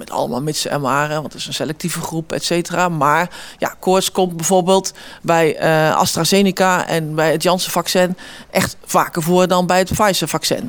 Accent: Dutch